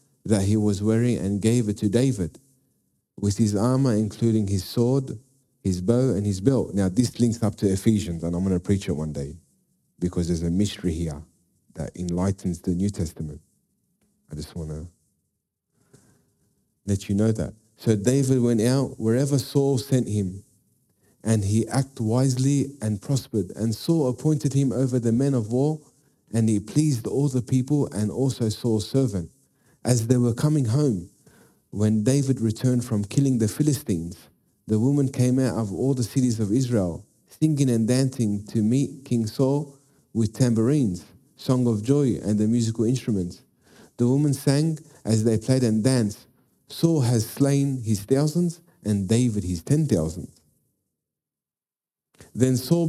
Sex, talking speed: male, 160 wpm